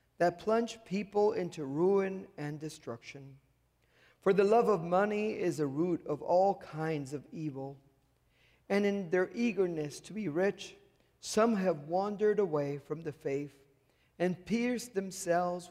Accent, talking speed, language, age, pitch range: American, 140 wpm, English, 50-69, 145-205 Hz